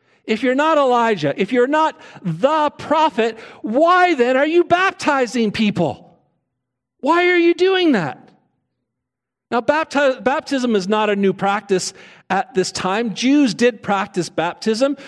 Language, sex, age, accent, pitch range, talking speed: English, male, 50-69, American, 190-260 Hz, 135 wpm